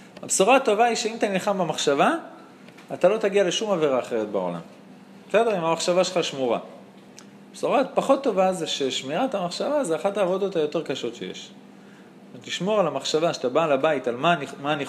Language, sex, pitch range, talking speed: Hebrew, male, 155-235 Hz, 175 wpm